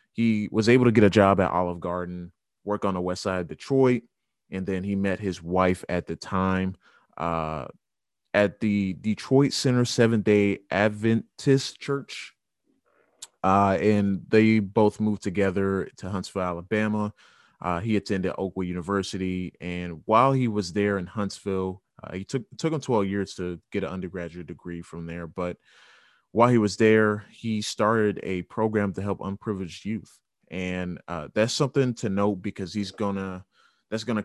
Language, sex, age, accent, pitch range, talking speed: English, male, 20-39, American, 95-110 Hz, 165 wpm